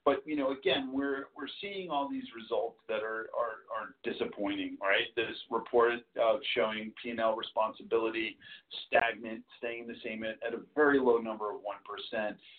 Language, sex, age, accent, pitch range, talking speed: English, male, 40-59, American, 110-140 Hz, 165 wpm